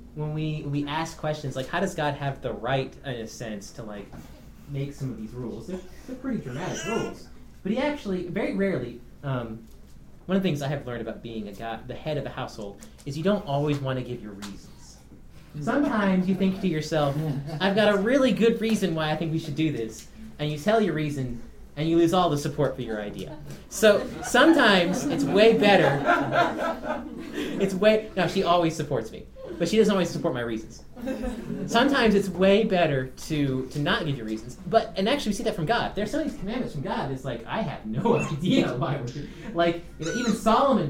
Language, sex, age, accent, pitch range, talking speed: English, male, 30-49, American, 135-195 Hz, 215 wpm